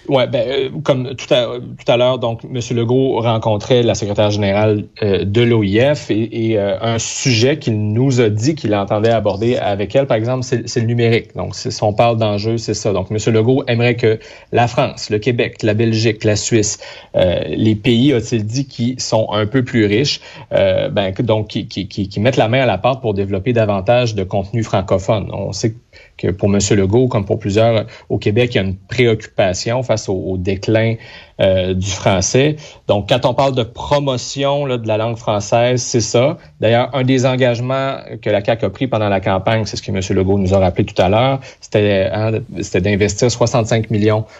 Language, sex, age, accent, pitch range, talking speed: French, male, 30-49, Canadian, 105-125 Hz, 210 wpm